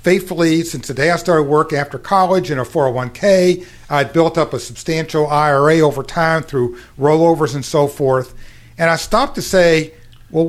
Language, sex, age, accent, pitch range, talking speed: English, male, 50-69, American, 135-175 Hz, 175 wpm